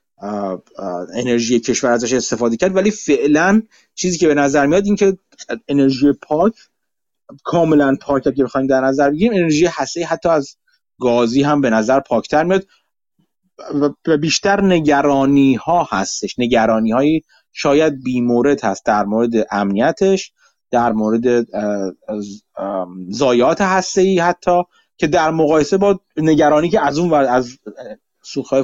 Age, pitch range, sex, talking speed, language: 30-49, 130-185 Hz, male, 140 wpm, Persian